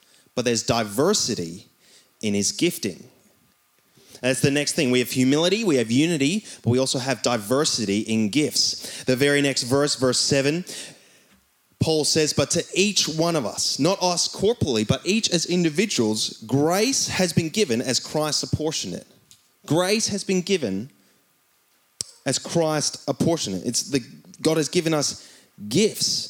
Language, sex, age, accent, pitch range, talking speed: English, male, 30-49, Australian, 135-175 Hz, 155 wpm